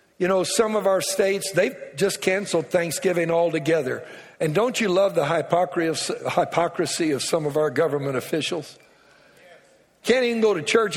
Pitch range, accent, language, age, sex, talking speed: 150-195 Hz, American, English, 60-79, male, 155 wpm